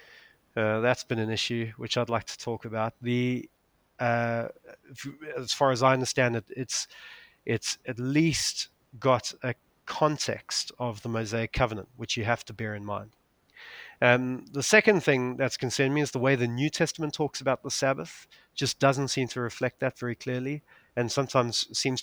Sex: male